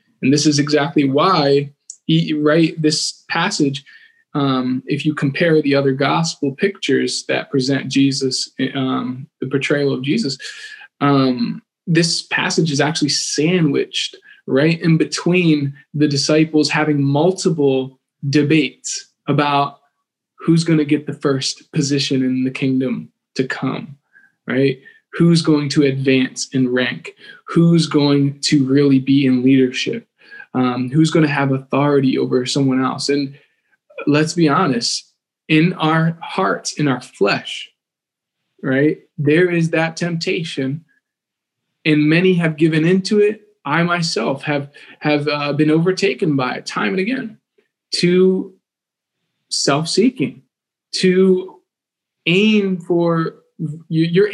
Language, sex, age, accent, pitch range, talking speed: English, male, 20-39, American, 140-170 Hz, 125 wpm